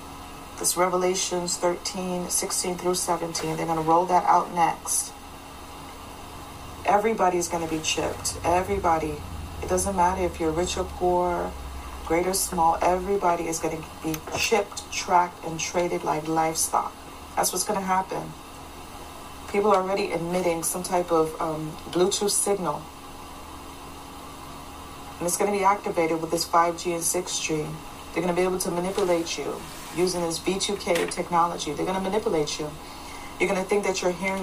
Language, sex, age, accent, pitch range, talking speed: English, female, 40-59, American, 150-185 Hz, 155 wpm